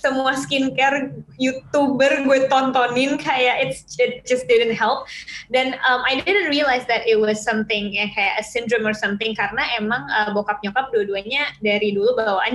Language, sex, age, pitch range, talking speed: Indonesian, female, 20-39, 210-260 Hz, 165 wpm